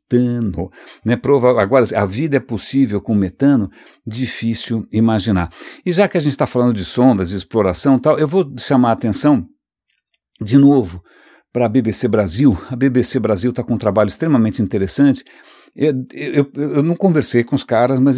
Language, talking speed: English, 175 wpm